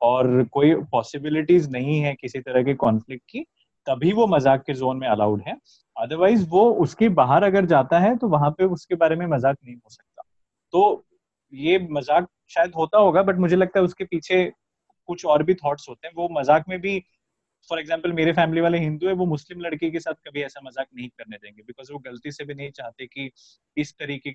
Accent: native